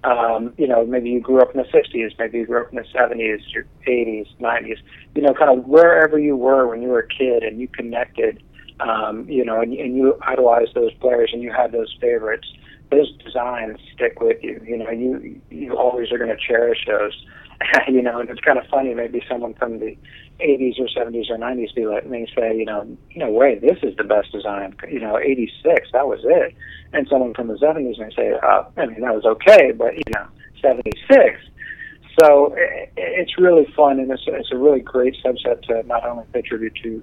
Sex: male